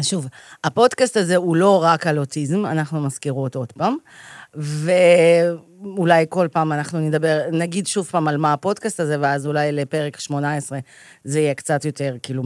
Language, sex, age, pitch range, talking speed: Hebrew, female, 40-59, 150-225 Hz, 160 wpm